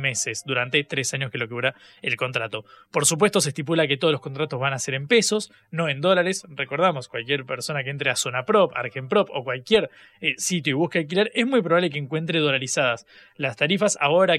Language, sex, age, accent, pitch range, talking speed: Spanish, male, 20-39, Argentinian, 145-180 Hz, 220 wpm